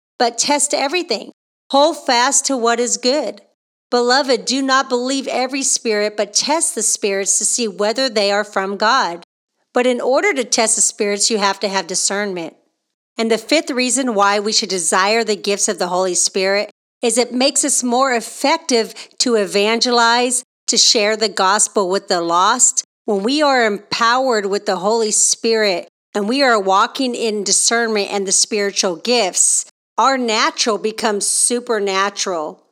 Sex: female